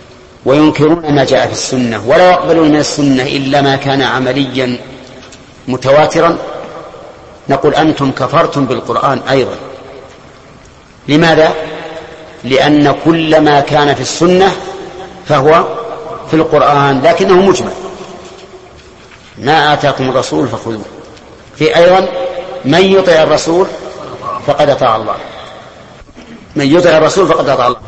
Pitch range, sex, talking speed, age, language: 135-165 Hz, male, 105 wpm, 50-69, Arabic